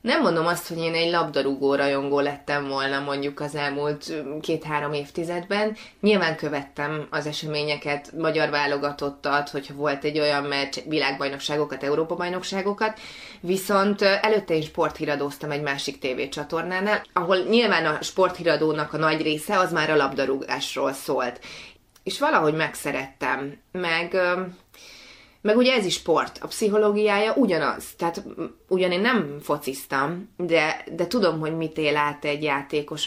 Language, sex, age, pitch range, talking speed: Hungarian, female, 20-39, 145-185 Hz, 130 wpm